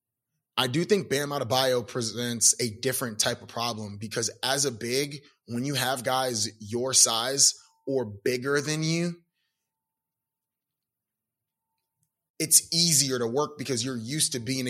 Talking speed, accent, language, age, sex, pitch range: 140 wpm, American, English, 20-39, male, 125-155 Hz